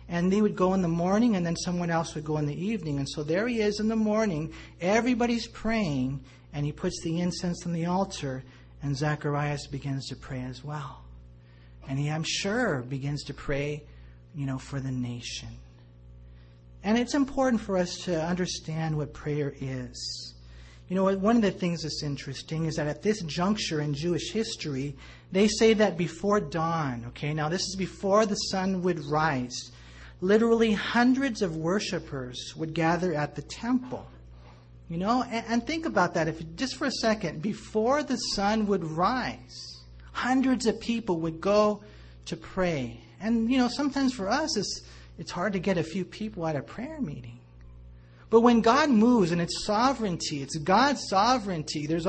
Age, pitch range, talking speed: 40-59, 140-210 Hz, 180 wpm